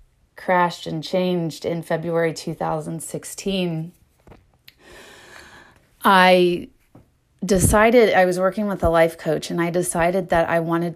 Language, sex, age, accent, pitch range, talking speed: English, female, 30-49, American, 160-185 Hz, 115 wpm